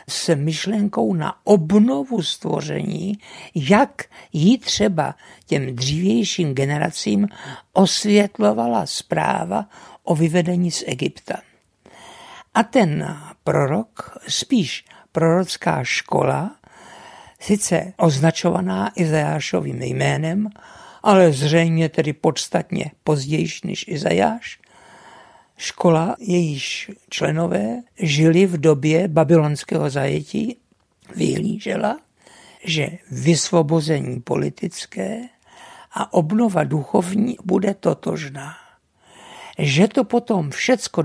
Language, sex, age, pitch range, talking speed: Czech, male, 60-79, 160-205 Hz, 80 wpm